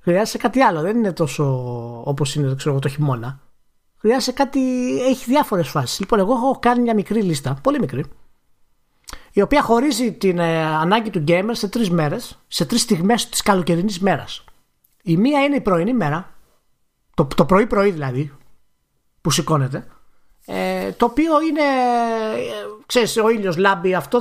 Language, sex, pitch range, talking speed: Greek, male, 150-235 Hz, 155 wpm